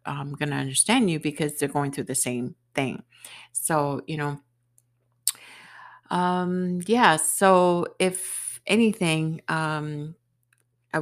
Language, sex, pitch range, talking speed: English, female, 140-175 Hz, 120 wpm